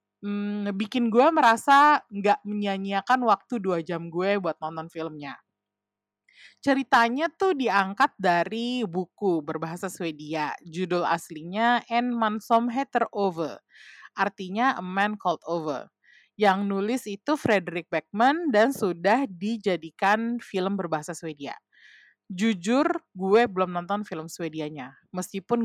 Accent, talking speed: native, 115 wpm